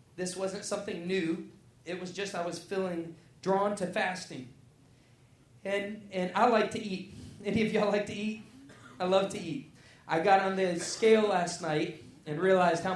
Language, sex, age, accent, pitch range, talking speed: English, male, 20-39, American, 155-200 Hz, 180 wpm